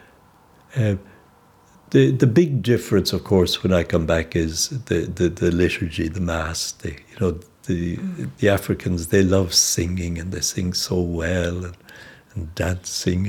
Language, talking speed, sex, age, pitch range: English, 165 wpm, male, 60-79, 90-110 Hz